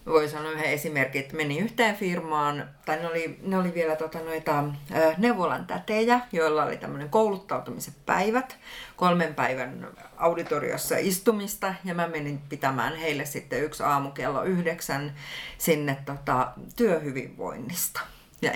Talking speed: 130 wpm